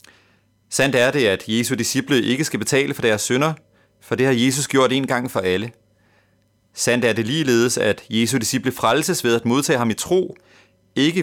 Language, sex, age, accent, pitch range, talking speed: Danish, male, 30-49, native, 105-140 Hz, 190 wpm